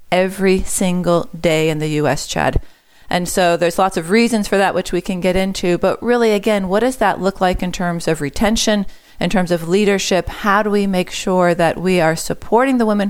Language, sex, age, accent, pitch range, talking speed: English, female, 40-59, American, 170-205 Hz, 215 wpm